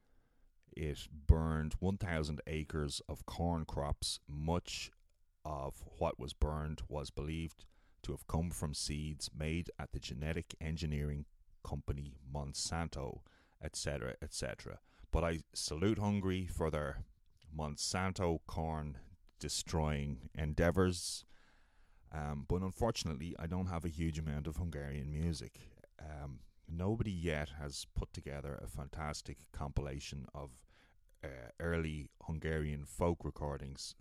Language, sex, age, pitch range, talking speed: English, male, 30-49, 75-85 Hz, 110 wpm